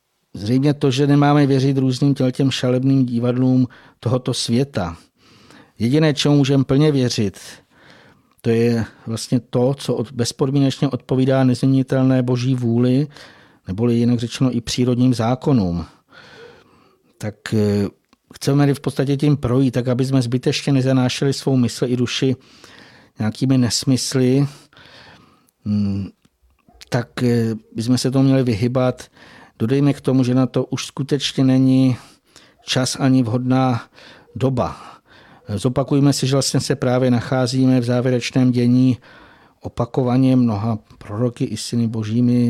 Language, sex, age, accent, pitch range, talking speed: Czech, male, 50-69, native, 120-135 Hz, 120 wpm